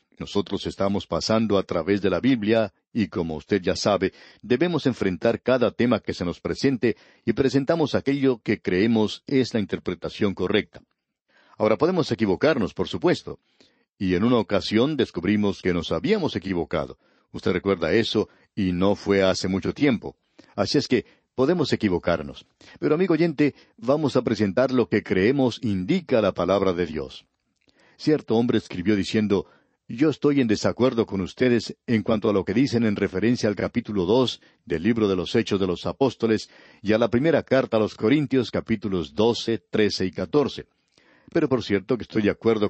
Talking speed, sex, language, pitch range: 170 wpm, male, English, 95-125 Hz